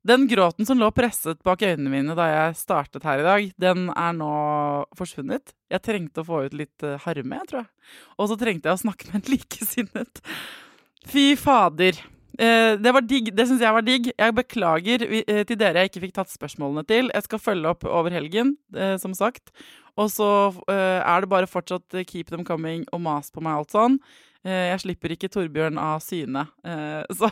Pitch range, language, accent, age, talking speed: 160-220 Hz, English, Swedish, 20-39, 185 wpm